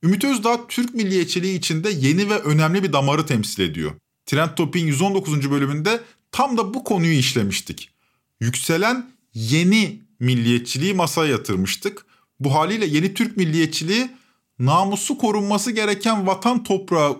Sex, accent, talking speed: male, native, 125 wpm